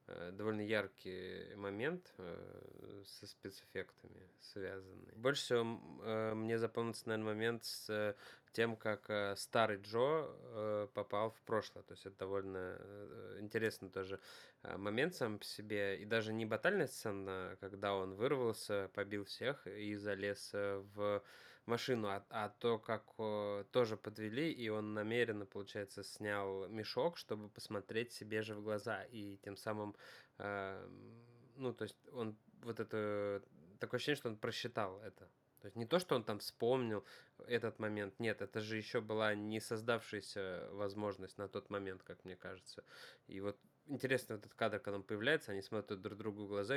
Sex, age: male, 20-39